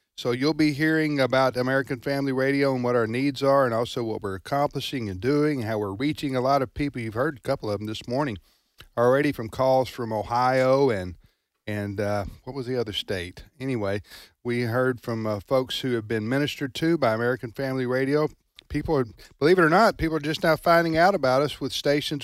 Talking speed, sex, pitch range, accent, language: 215 wpm, male, 115-145 Hz, American, English